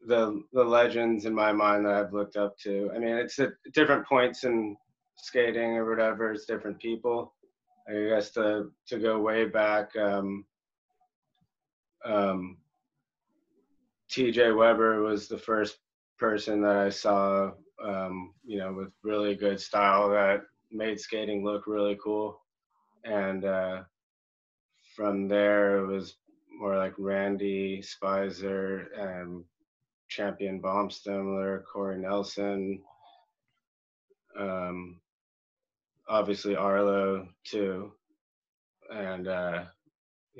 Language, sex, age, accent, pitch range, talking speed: English, male, 20-39, American, 95-110 Hz, 115 wpm